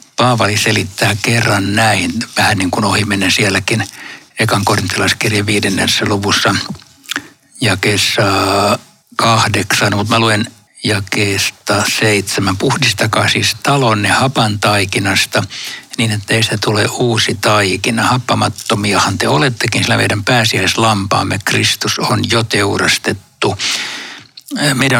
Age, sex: 60-79, male